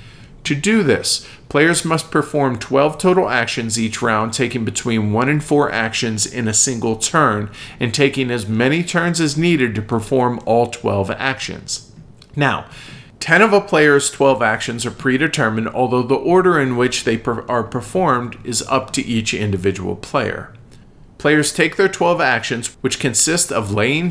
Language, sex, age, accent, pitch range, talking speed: English, male, 40-59, American, 115-145 Hz, 160 wpm